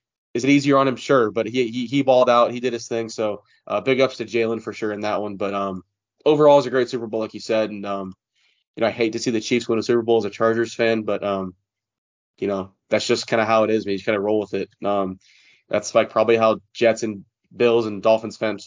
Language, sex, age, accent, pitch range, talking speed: English, male, 20-39, American, 105-120 Hz, 275 wpm